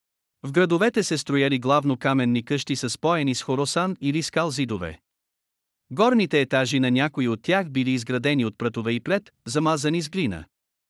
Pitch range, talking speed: 120-155 Hz, 155 wpm